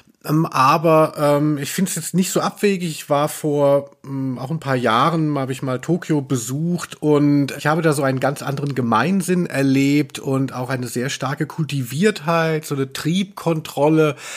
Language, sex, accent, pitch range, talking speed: German, male, German, 130-160 Hz, 170 wpm